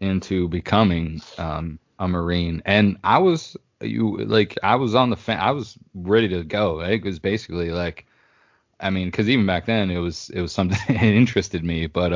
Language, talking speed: English, 195 wpm